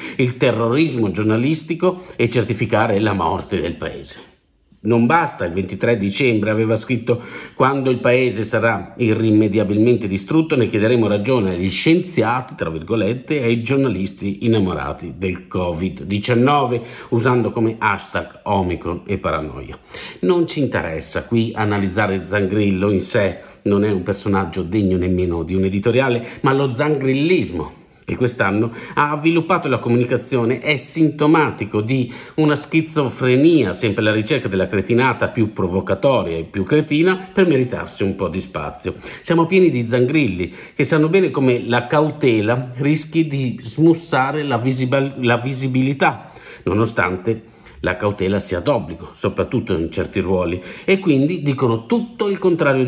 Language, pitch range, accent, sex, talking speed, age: Italian, 105-140 Hz, native, male, 135 wpm, 50-69